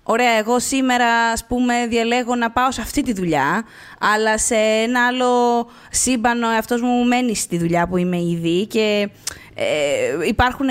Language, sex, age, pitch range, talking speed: Greek, female, 20-39, 210-290 Hz, 155 wpm